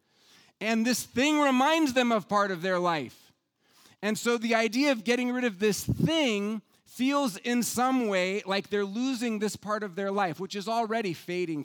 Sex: male